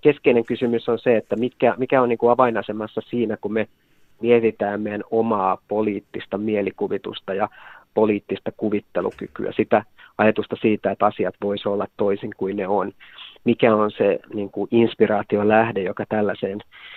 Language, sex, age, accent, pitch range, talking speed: Finnish, male, 30-49, native, 105-120 Hz, 145 wpm